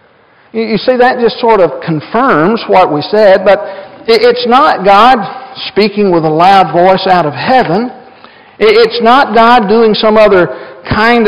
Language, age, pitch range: English, 60-79, 160-220 Hz